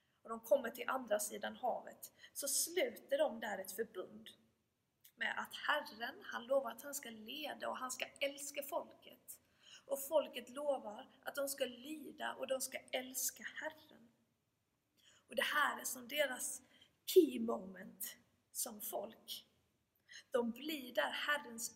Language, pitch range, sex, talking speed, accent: Swedish, 235-295 Hz, female, 145 wpm, native